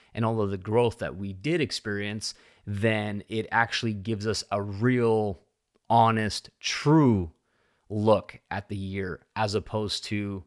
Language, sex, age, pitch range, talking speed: English, male, 30-49, 105-120 Hz, 145 wpm